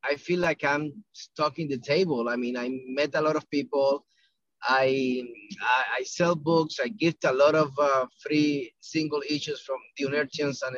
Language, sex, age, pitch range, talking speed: English, male, 30-49, 140-180 Hz, 190 wpm